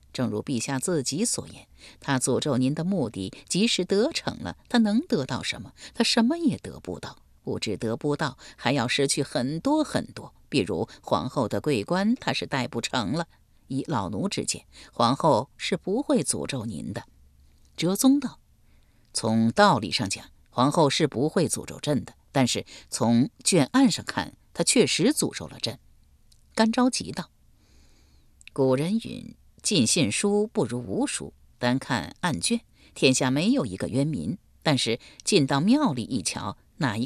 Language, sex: Chinese, female